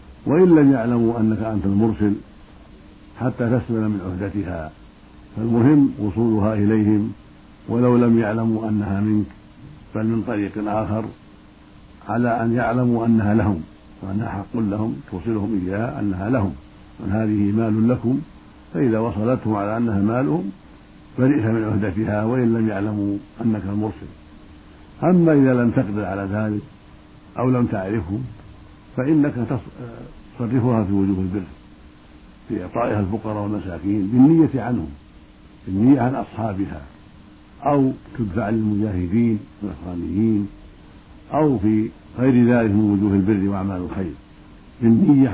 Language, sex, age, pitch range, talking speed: Arabic, male, 60-79, 100-115 Hz, 115 wpm